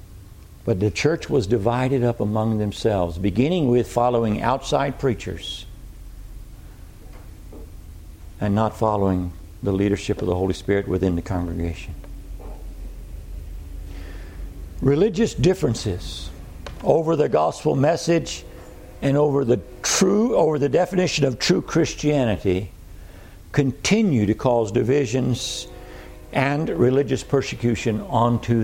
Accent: American